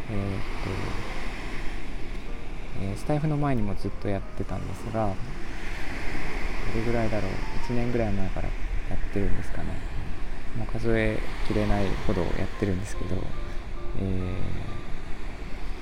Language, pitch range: Japanese, 90-110 Hz